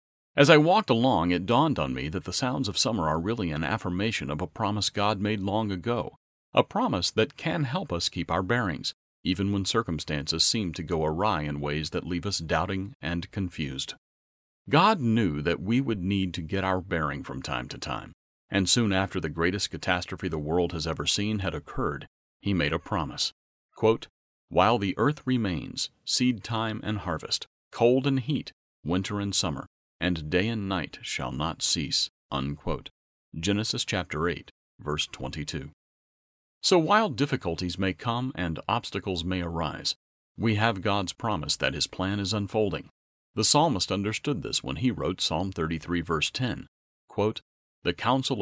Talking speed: 170 wpm